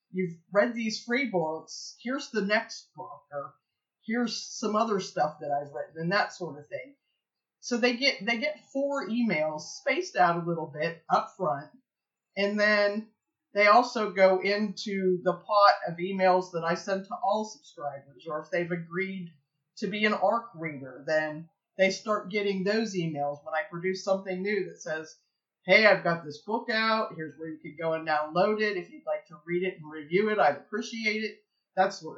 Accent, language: American, English